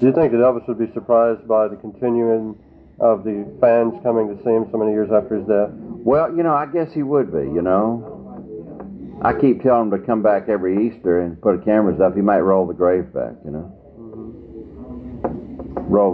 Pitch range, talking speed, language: 105-125 Hz, 210 wpm, English